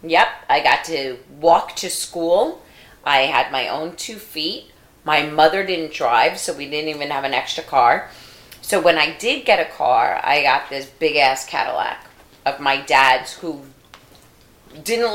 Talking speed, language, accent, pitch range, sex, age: 165 wpm, English, American, 125-165 Hz, female, 30-49